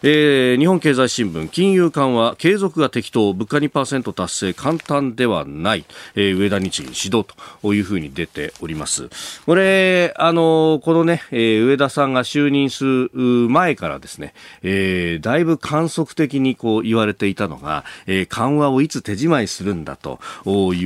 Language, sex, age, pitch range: Japanese, male, 40-59, 105-155 Hz